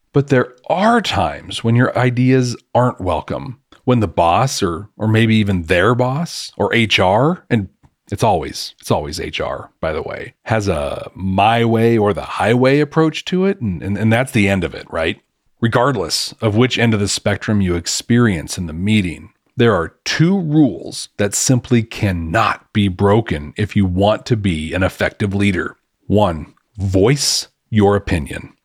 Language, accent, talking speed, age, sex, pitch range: English, American, 170 wpm, 40-59, male, 100-130 Hz